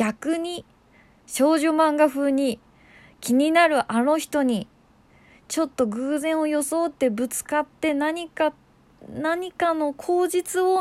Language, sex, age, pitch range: Japanese, female, 20-39, 215-310 Hz